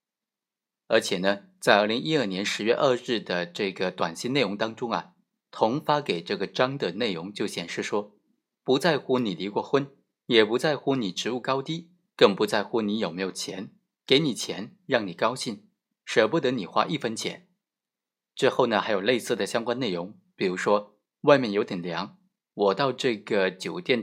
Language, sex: Chinese, male